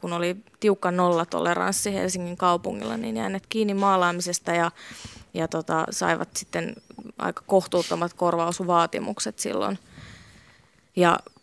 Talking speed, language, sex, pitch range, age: 105 wpm, Finnish, female, 120-195 Hz, 20-39